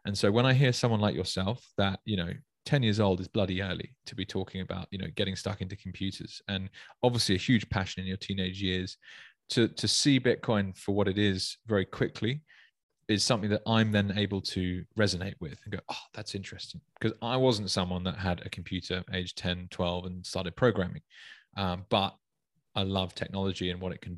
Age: 20-39